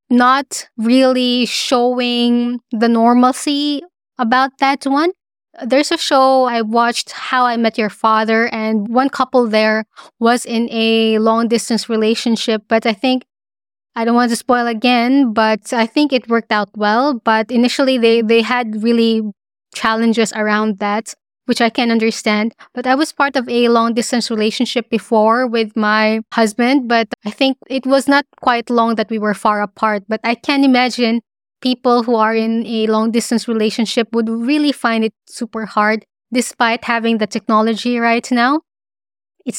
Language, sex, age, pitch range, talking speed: English, female, 20-39, 220-250 Hz, 160 wpm